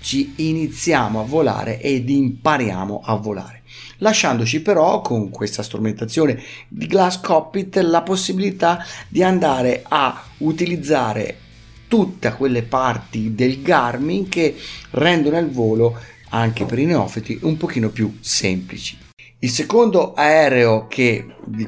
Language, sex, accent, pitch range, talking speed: Italian, male, native, 115-170 Hz, 120 wpm